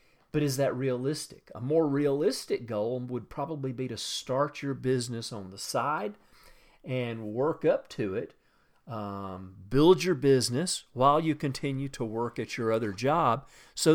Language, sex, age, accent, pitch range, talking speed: English, male, 40-59, American, 110-140 Hz, 160 wpm